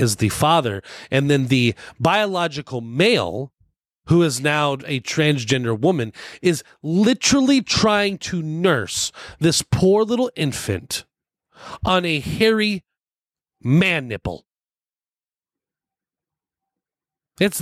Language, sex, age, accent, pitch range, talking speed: English, male, 30-49, American, 150-240 Hz, 100 wpm